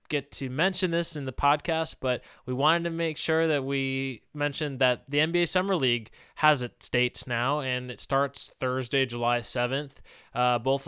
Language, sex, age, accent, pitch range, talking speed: English, male, 20-39, American, 120-145 Hz, 180 wpm